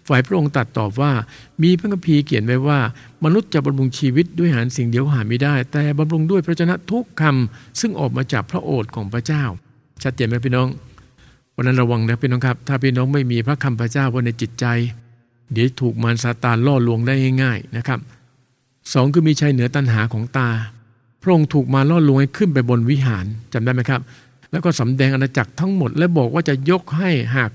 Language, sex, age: English, male, 60-79